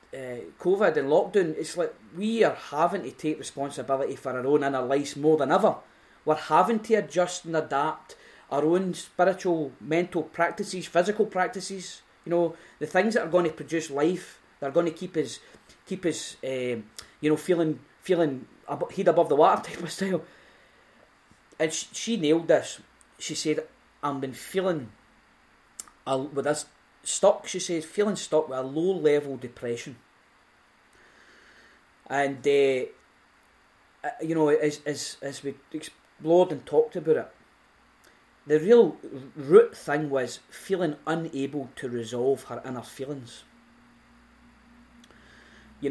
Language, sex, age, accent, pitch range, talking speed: English, male, 20-39, British, 135-175 Hz, 150 wpm